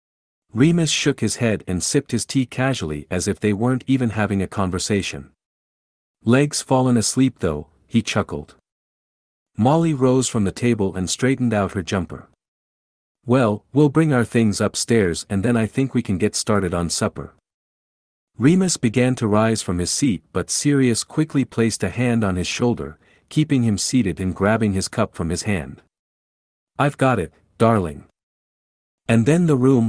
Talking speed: 165 wpm